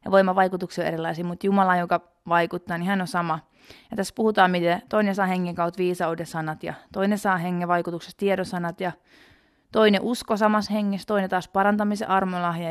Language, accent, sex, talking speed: Finnish, native, female, 175 wpm